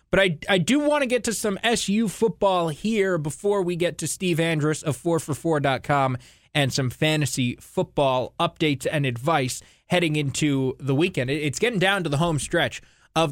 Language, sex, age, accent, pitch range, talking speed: English, male, 20-39, American, 130-195 Hz, 175 wpm